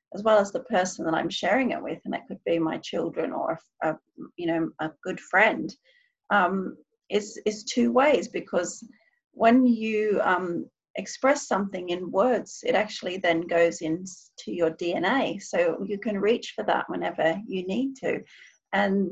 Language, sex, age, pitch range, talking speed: English, female, 40-59, 175-235 Hz, 165 wpm